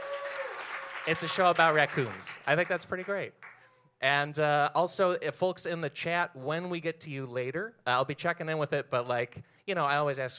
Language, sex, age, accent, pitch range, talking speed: English, male, 30-49, American, 125-165 Hz, 220 wpm